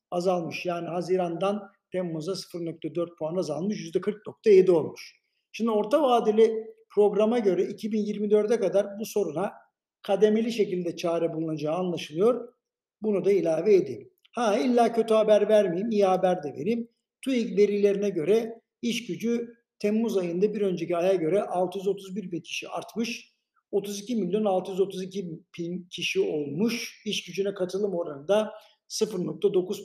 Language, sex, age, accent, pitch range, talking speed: Turkish, male, 60-79, native, 185-225 Hz, 125 wpm